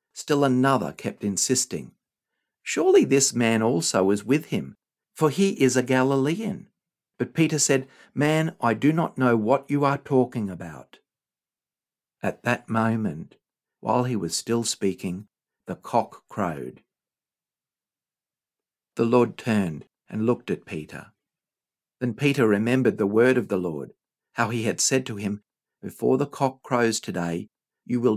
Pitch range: 105-140 Hz